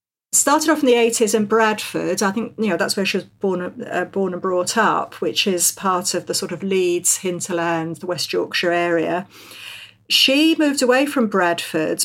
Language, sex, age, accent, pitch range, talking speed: English, female, 50-69, British, 180-220 Hz, 195 wpm